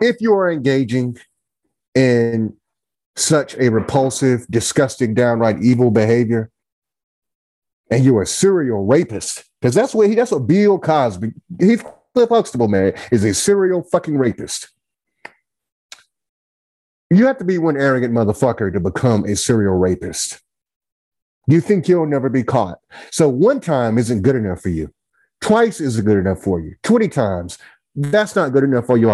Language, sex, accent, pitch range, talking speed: English, male, American, 105-160 Hz, 145 wpm